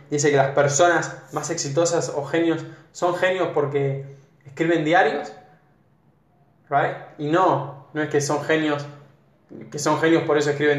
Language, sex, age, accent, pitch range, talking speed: Spanish, male, 10-29, Argentinian, 145-160 Hz, 145 wpm